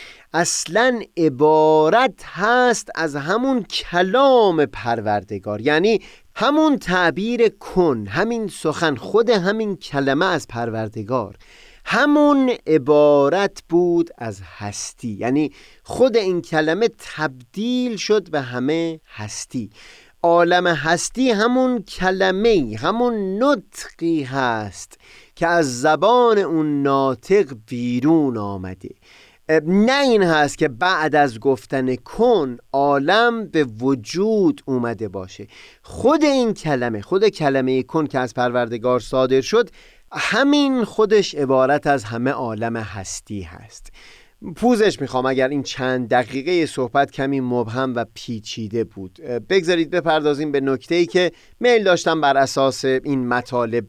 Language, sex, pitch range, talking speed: Persian, male, 125-195 Hz, 110 wpm